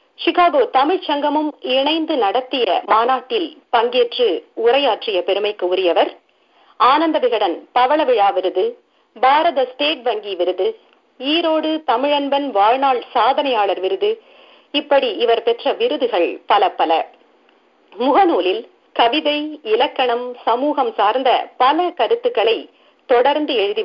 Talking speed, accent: 95 wpm, native